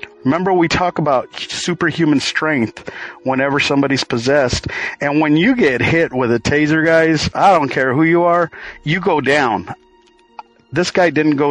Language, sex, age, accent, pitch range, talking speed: English, male, 50-69, American, 125-170 Hz, 160 wpm